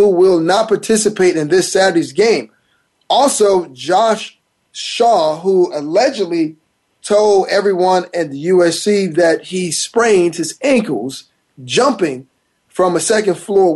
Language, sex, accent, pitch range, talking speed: English, male, American, 175-220 Hz, 115 wpm